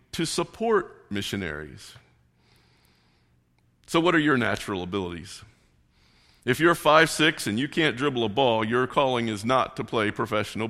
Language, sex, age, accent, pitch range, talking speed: English, male, 50-69, American, 95-145 Hz, 145 wpm